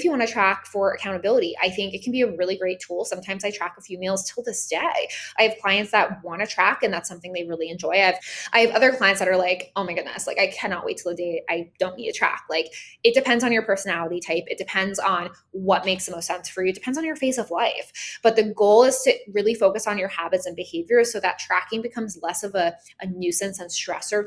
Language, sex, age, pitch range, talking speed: English, female, 20-39, 180-225 Hz, 265 wpm